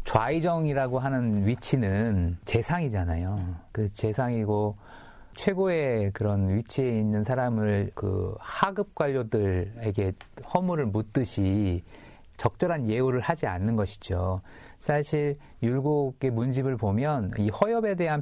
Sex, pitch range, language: male, 95-130 Hz, Korean